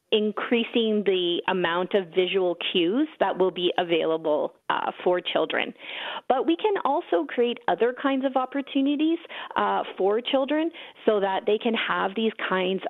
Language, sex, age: English, female, 30-49